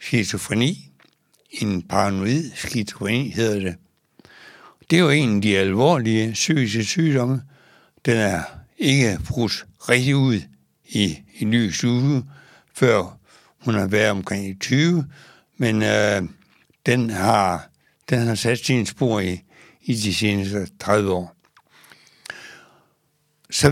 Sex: male